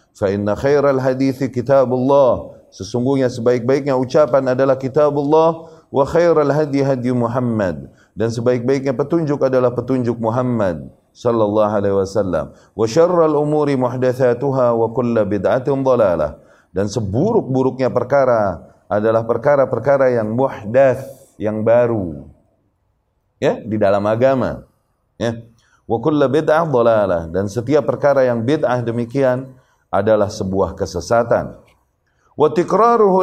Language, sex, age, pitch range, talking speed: Indonesian, male, 30-49, 120-160 Hz, 105 wpm